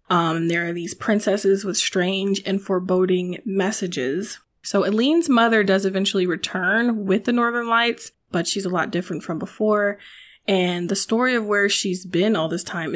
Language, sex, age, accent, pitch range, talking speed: English, female, 20-39, American, 180-205 Hz, 170 wpm